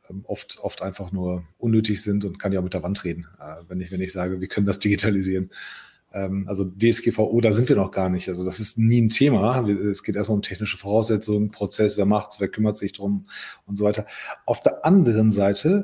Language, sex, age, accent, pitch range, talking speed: German, male, 30-49, German, 100-120 Hz, 220 wpm